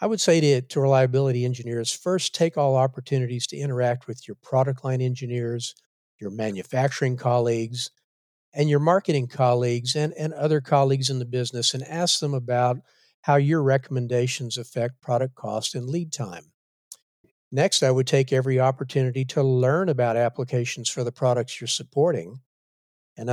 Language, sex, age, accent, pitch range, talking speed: English, male, 50-69, American, 120-140 Hz, 155 wpm